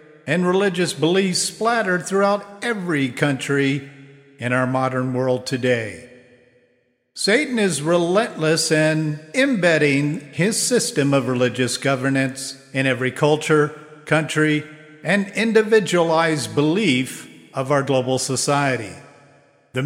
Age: 50-69